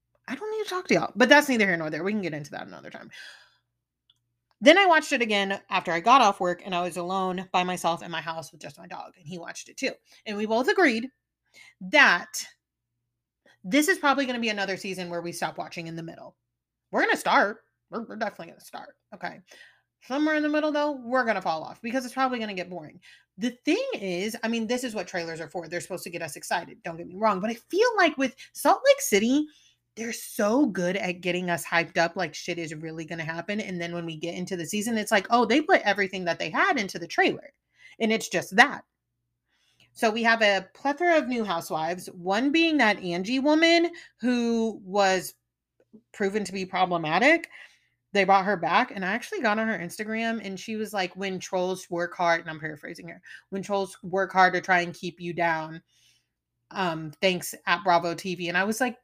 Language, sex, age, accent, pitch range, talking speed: English, female, 30-49, American, 170-240 Hz, 230 wpm